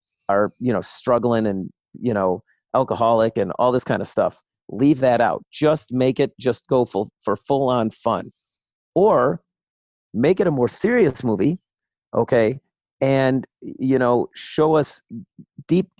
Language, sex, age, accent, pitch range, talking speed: English, male, 40-59, American, 115-145 Hz, 150 wpm